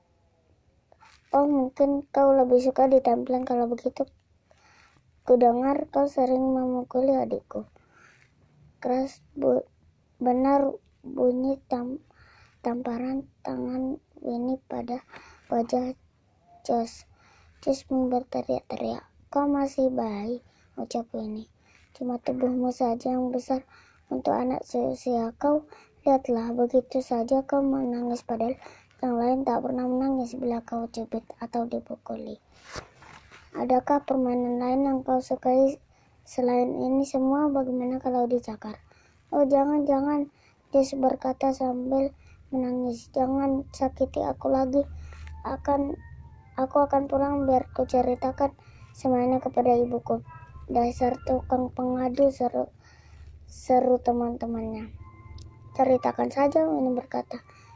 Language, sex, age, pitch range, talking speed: Indonesian, male, 20-39, 240-270 Hz, 105 wpm